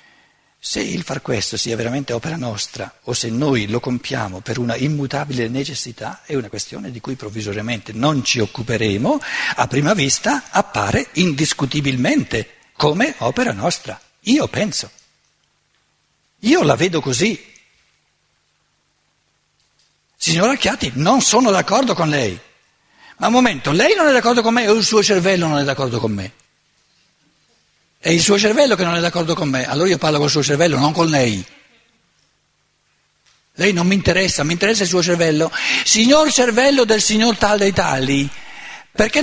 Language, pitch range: Italian, 125-195 Hz